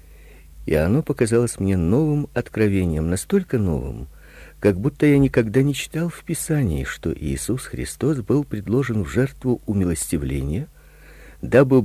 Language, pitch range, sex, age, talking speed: Russian, 90-145 Hz, male, 50-69, 125 wpm